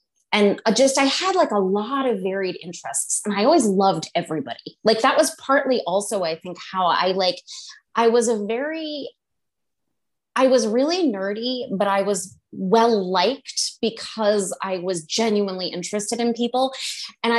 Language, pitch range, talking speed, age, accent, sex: English, 185-245 Hz, 160 wpm, 20-39, American, female